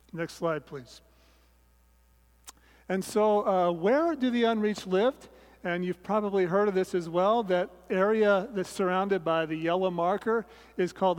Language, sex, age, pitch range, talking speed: English, male, 40-59, 165-210 Hz, 155 wpm